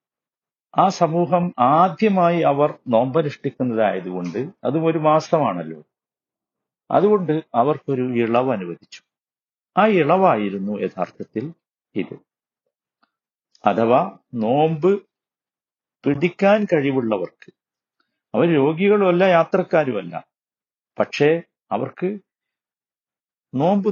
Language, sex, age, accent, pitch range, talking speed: Malayalam, male, 50-69, native, 135-185 Hz, 70 wpm